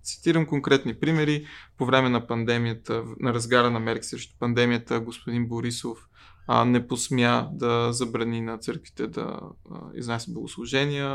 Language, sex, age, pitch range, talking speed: Bulgarian, male, 20-39, 120-135 Hz, 135 wpm